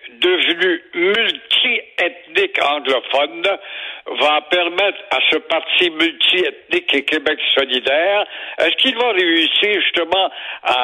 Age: 60-79